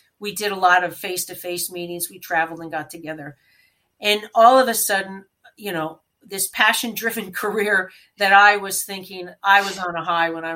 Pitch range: 170-200 Hz